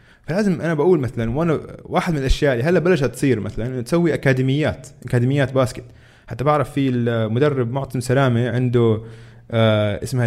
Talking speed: 145 wpm